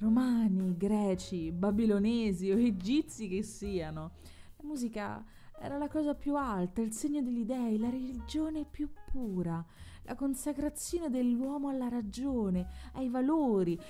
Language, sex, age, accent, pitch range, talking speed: Italian, female, 30-49, native, 190-270 Hz, 125 wpm